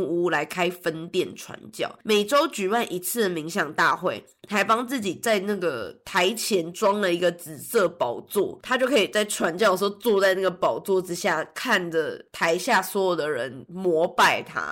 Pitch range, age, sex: 180-230 Hz, 20-39, female